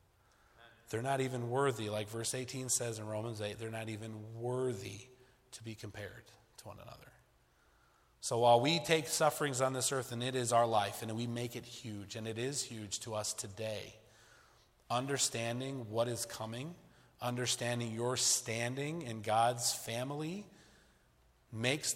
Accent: American